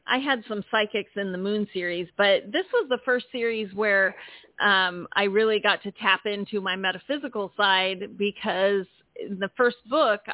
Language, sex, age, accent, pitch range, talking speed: English, female, 40-59, American, 185-225 Hz, 175 wpm